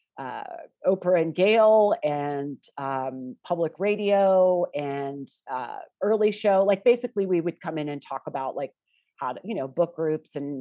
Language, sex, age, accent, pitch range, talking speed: English, female, 40-59, American, 155-205 Hz, 165 wpm